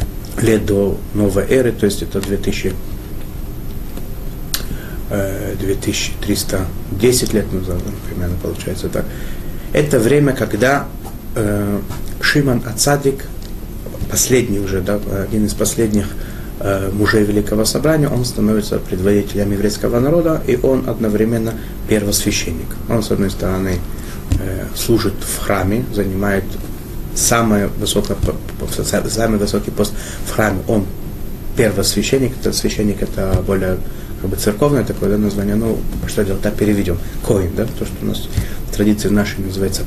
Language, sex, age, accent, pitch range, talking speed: Russian, male, 30-49, native, 100-115 Hz, 115 wpm